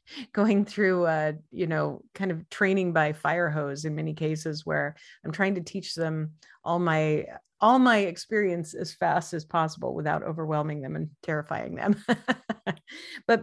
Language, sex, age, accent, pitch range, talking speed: English, female, 40-59, American, 160-215 Hz, 160 wpm